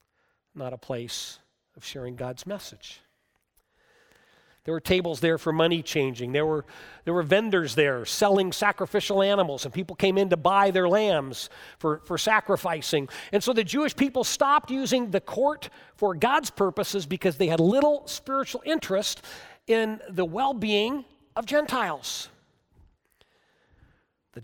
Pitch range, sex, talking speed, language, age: 165-225 Hz, male, 140 wpm, English, 50-69